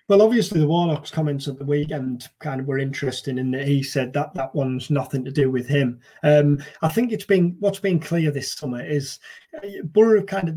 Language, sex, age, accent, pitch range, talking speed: English, male, 30-49, British, 140-160 Hz, 215 wpm